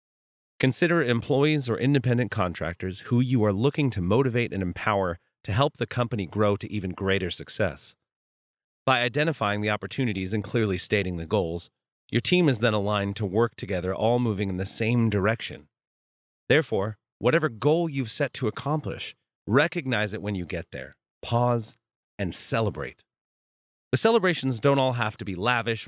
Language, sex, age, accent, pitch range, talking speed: English, male, 30-49, American, 100-130 Hz, 160 wpm